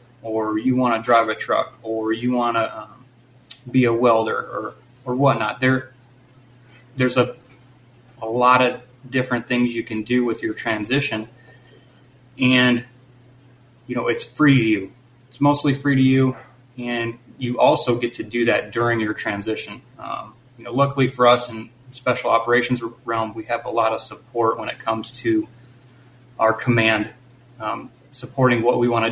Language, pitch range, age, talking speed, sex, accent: English, 115-125 Hz, 30-49, 165 wpm, male, American